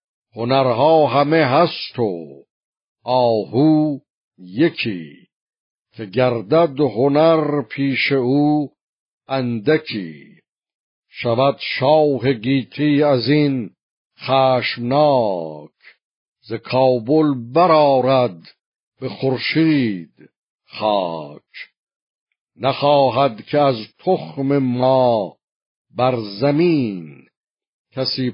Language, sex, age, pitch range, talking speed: Persian, male, 60-79, 120-145 Hz, 65 wpm